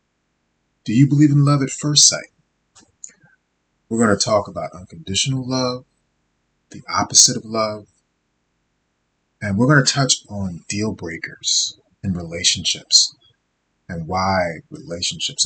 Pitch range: 75-125 Hz